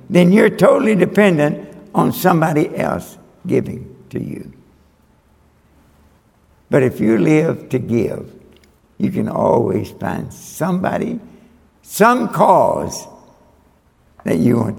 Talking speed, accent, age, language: 105 wpm, American, 60-79, English